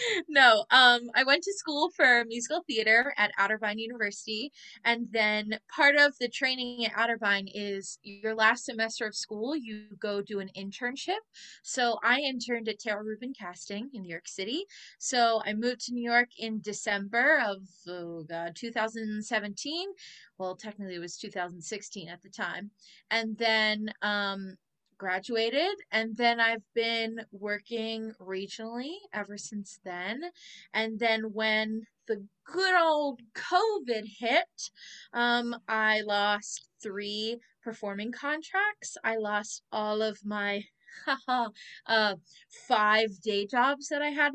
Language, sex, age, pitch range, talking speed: English, female, 20-39, 210-270 Hz, 135 wpm